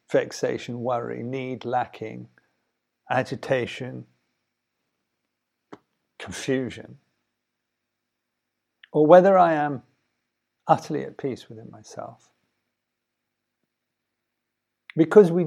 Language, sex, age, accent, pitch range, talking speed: English, male, 50-69, British, 120-180 Hz, 65 wpm